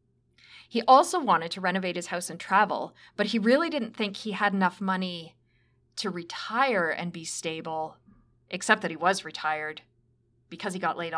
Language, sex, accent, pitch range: English, female, American, 155-215 Hz